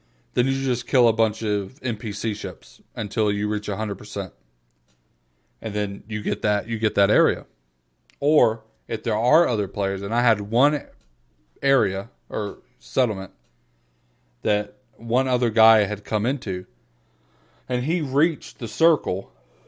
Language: English